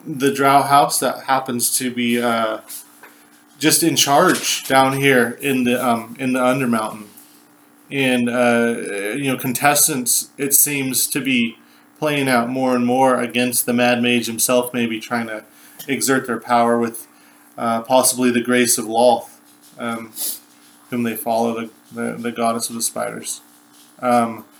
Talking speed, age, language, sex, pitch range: 150 wpm, 20-39, English, male, 120-140 Hz